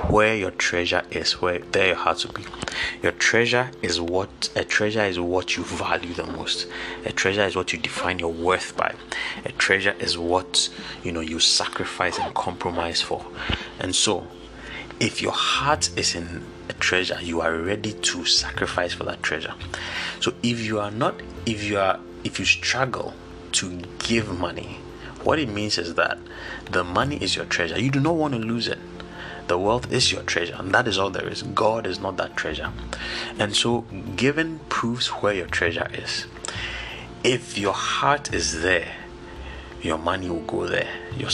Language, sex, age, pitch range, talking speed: English, male, 30-49, 85-115 Hz, 180 wpm